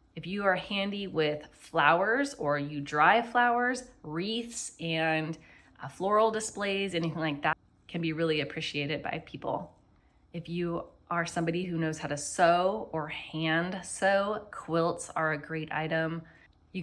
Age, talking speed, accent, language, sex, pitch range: 20-39, 145 wpm, American, English, female, 155-185 Hz